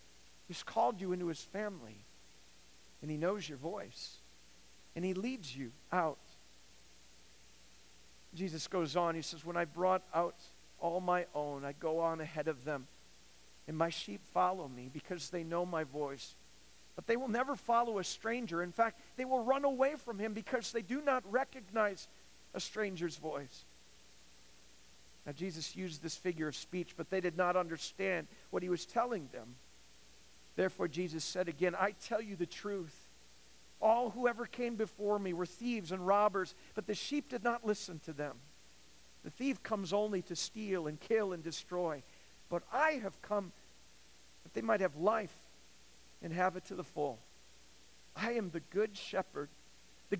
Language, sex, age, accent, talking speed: English, male, 50-69, American, 170 wpm